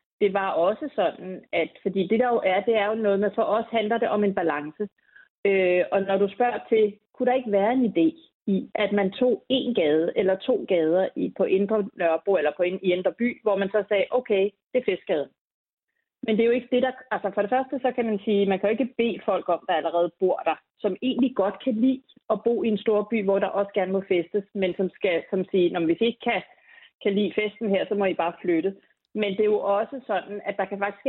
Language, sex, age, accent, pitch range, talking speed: Danish, female, 30-49, native, 185-230 Hz, 255 wpm